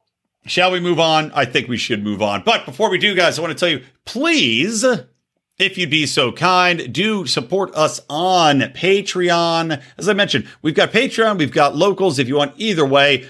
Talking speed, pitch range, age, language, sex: 205 wpm, 120-170 Hz, 50-69, English, male